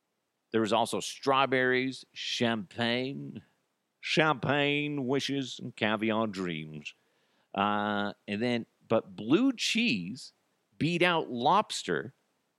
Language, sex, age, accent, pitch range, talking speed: English, male, 50-69, American, 105-155 Hz, 90 wpm